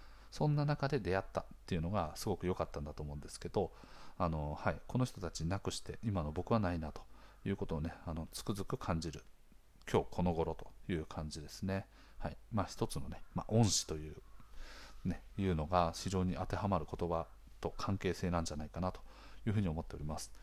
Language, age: Japanese, 40-59